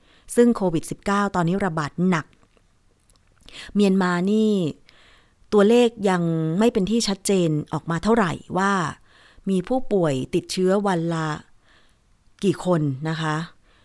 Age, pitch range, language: 30-49, 155-195 Hz, Thai